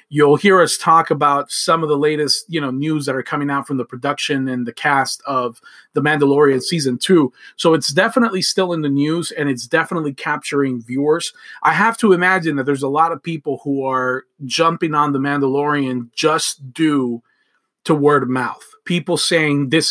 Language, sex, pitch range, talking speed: English, male, 140-170 Hz, 195 wpm